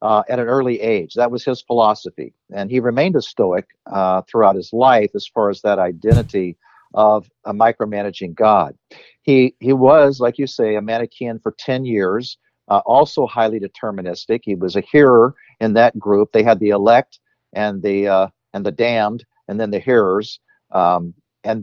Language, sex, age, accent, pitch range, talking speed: English, male, 50-69, American, 110-130 Hz, 180 wpm